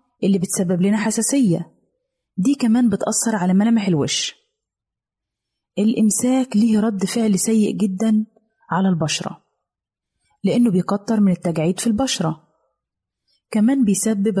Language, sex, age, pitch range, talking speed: Arabic, female, 20-39, 190-240 Hz, 110 wpm